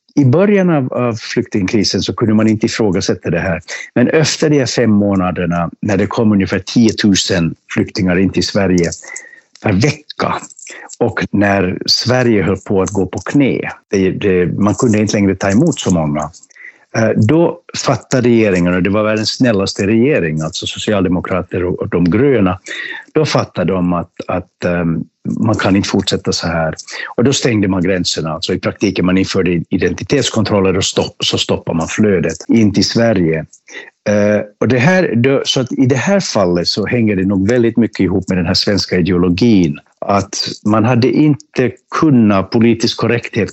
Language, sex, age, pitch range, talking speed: Swedish, male, 60-79, 95-120 Hz, 165 wpm